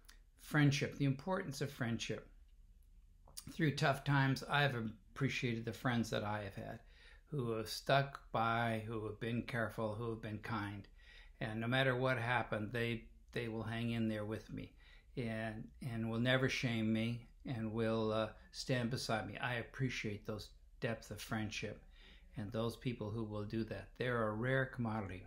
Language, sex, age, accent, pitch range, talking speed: English, male, 60-79, American, 105-125 Hz, 170 wpm